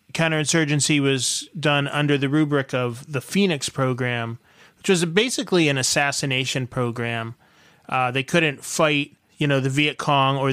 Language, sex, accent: English, male, American